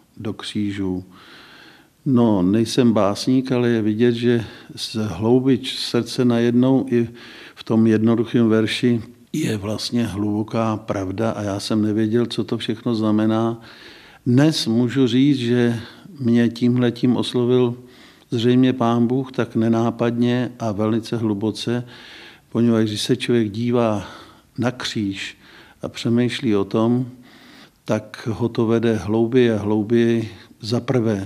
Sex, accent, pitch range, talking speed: male, native, 110-125 Hz, 125 wpm